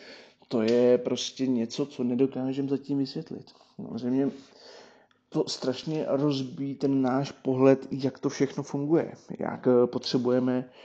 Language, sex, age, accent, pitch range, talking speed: Czech, male, 30-49, native, 125-145 Hz, 115 wpm